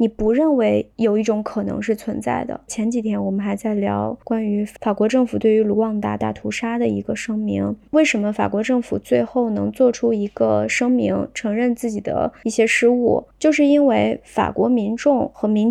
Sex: female